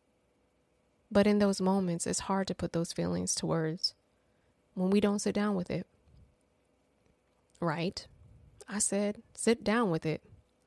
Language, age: English, 20-39